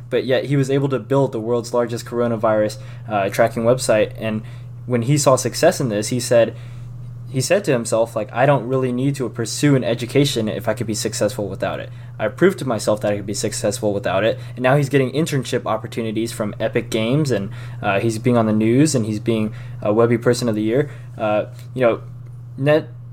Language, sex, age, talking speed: English, male, 20-39, 215 wpm